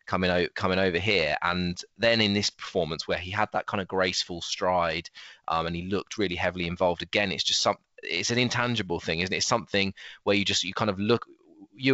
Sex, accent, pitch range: male, British, 90-105 Hz